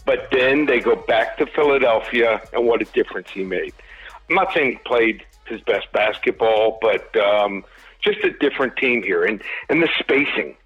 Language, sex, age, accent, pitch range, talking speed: English, male, 50-69, American, 115-145 Hz, 180 wpm